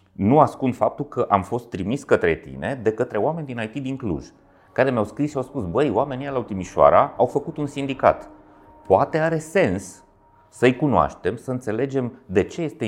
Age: 30-49